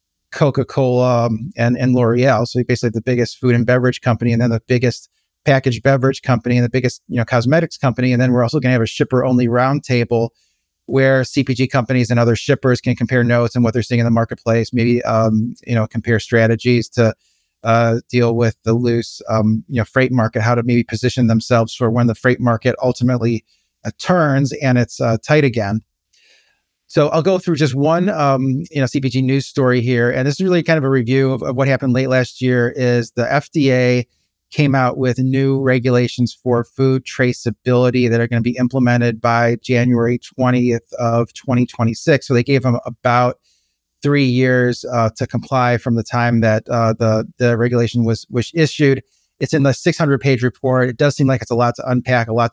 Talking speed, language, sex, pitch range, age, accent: 200 wpm, English, male, 115-130 Hz, 30-49, American